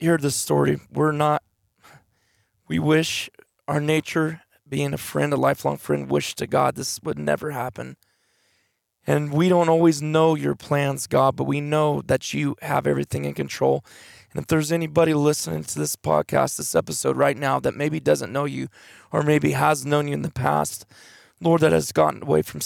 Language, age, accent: English, 20-39, American